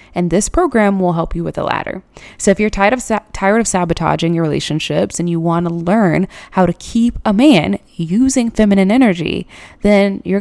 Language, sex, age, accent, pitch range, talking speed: English, female, 20-39, American, 170-220 Hz, 200 wpm